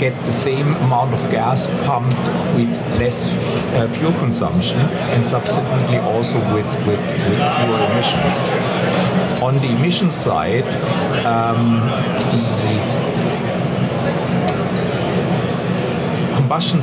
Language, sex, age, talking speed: English, male, 60-79, 105 wpm